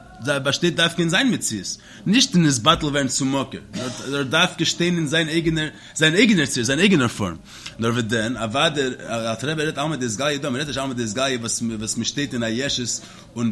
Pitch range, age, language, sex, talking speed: 130-185 Hz, 30-49, English, male, 185 wpm